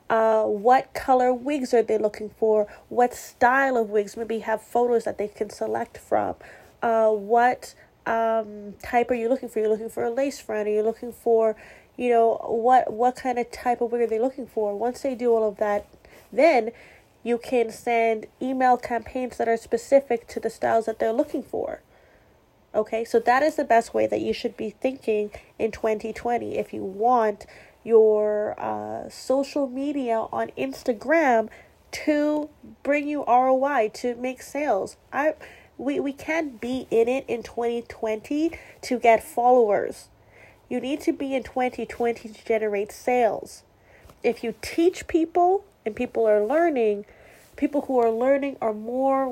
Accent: American